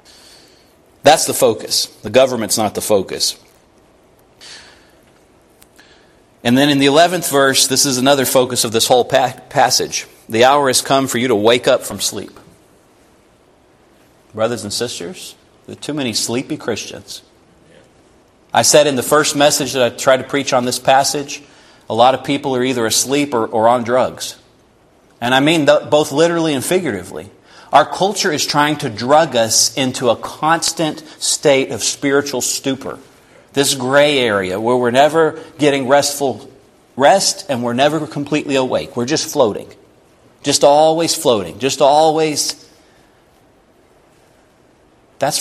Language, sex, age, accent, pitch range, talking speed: English, male, 40-59, American, 125-150 Hz, 145 wpm